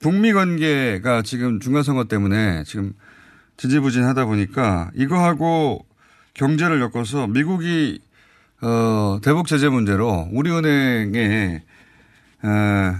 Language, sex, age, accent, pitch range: Korean, male, 30-49, native, 110-165 Hz